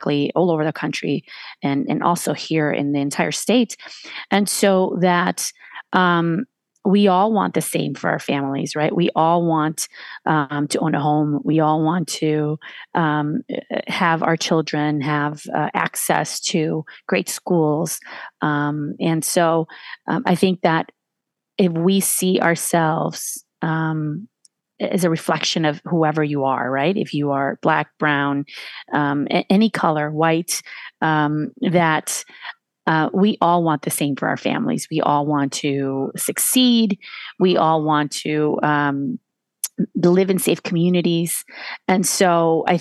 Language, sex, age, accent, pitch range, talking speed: English, female, 30-49, American, 150-180 Hz, 145 wpm